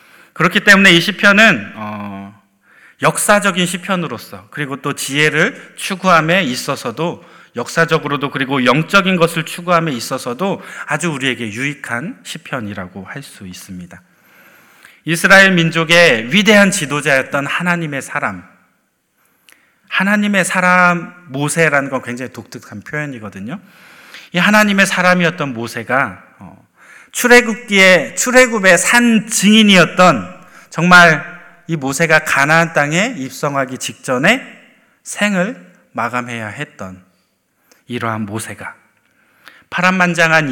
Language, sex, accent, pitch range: Korean, male, native, 130-185 Hz